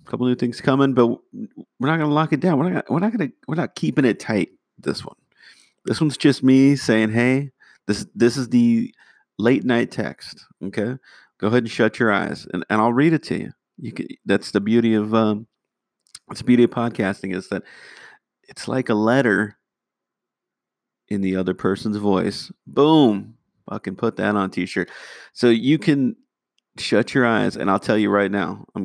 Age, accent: 40-59, American